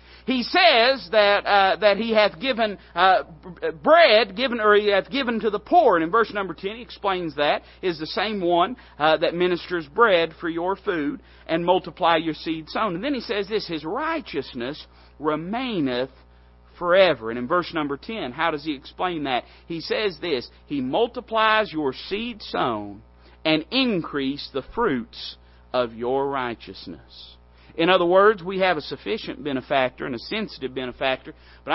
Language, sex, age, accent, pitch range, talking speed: English, male, 40-59, American, 130-215 Hz, 170 wpm